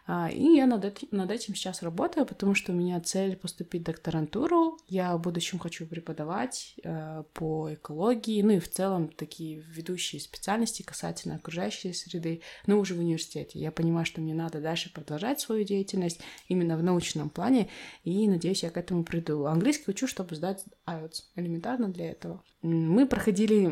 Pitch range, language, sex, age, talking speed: 170-215 Hz, Russian, female, 20-39, 160 wpm